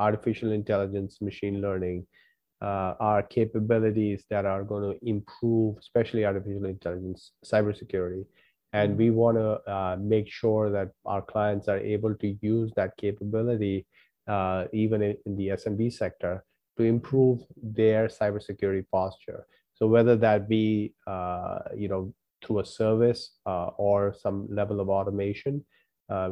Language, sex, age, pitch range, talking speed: English, male, 30-49, 95-110 Hz, 130 wpm